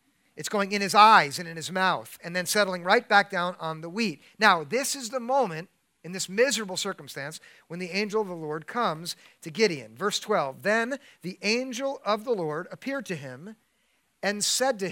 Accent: American